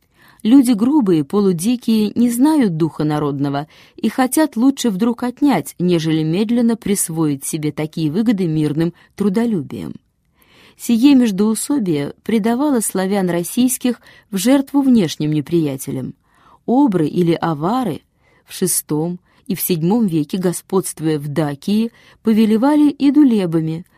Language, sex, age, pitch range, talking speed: Russian, female, 20-39, 155-230 Hz, 110 wpm